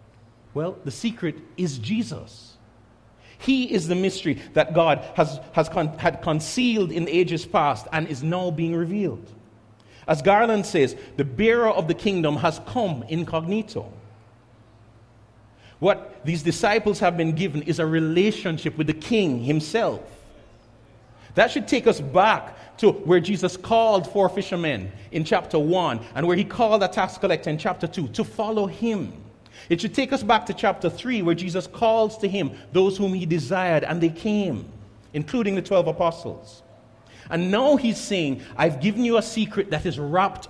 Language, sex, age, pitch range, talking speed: English, male, 40-59, 135-195 Hz, 165 wpm